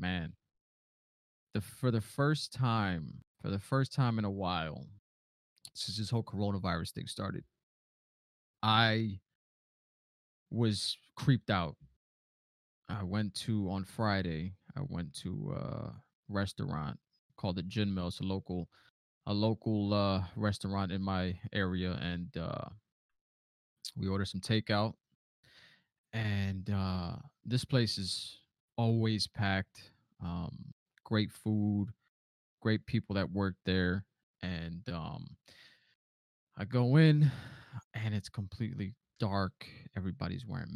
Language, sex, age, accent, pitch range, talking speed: English, male, 20-39, American, 95-110 Hz, 115 wpm